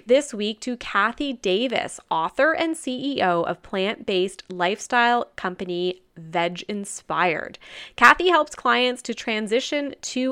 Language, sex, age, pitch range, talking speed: English, female, 20-39, 185-265 Hz, 110 wpm